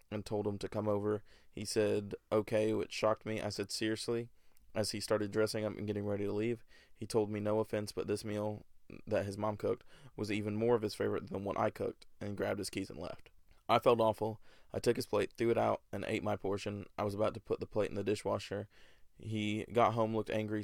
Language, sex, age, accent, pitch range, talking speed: English, male, 20-39, American, 105-110 Hz, 240 wpm